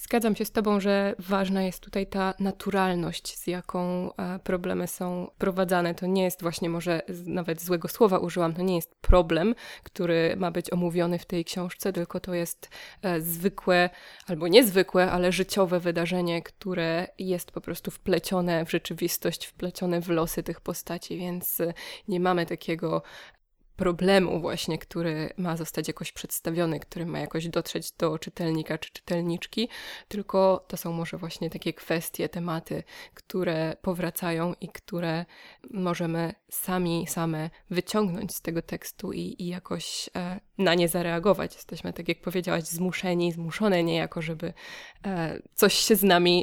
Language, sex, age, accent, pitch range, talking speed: Polish, female, 20-39, native, 170-190 Hz, 145 wpm